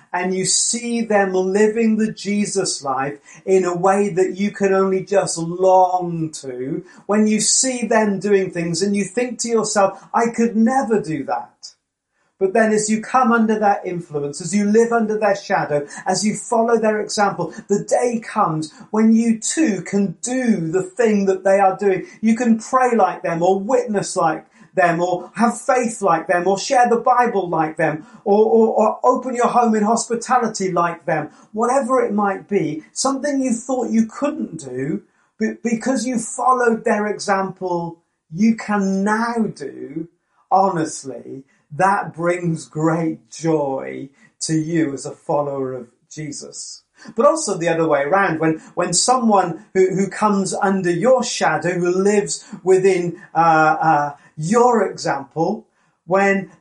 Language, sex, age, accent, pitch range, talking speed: English, male, 40-59, British, 175-225 Hz, 160 wpm